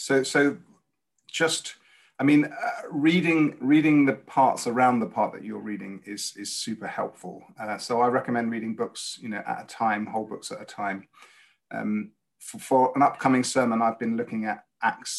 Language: English